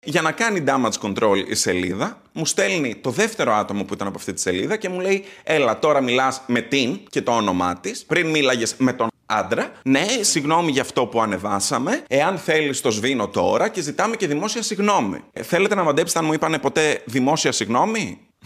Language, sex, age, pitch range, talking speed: Greek, male, 30-49, 110-165 Hz, 200 wpm